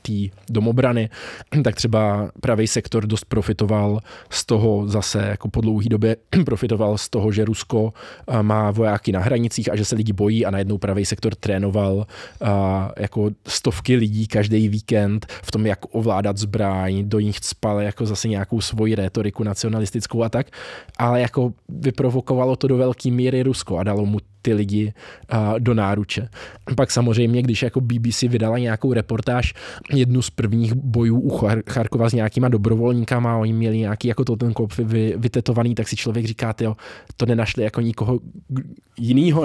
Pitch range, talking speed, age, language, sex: 105-125 Hz, 160 wpm, 20-39, English, male